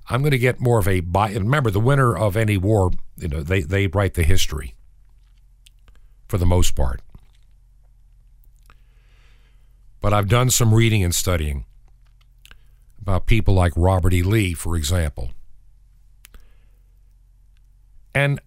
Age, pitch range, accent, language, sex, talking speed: 50-69, 90-115 Hz, American, English, male, 130 wpm